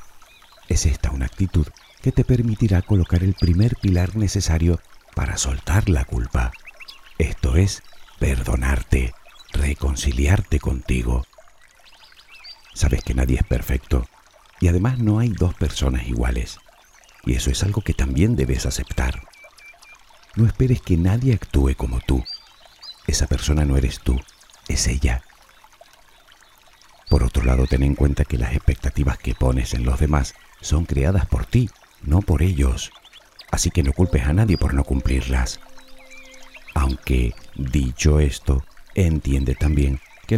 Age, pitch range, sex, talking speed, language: 50-69, 65-90 Hz, male, 135 wpm, Spanish